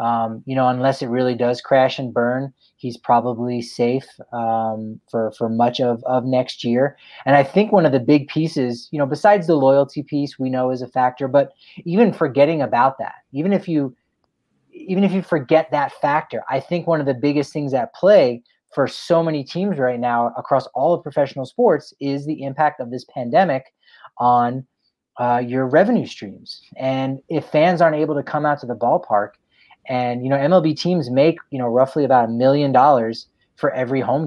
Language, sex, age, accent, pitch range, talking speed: English, male, 30-49, American, 125-150 Hz, 195 wpm